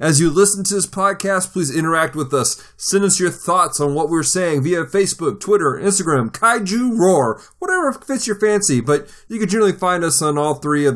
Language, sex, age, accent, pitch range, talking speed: English, male, 30-49, American, 125-175 Hz, 210 wpm